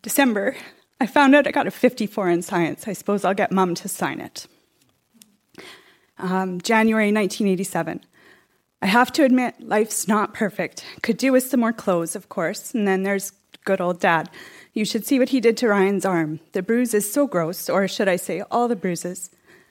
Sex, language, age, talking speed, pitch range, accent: female, English, 20-39, 190 wpm, 190-240 Hz, American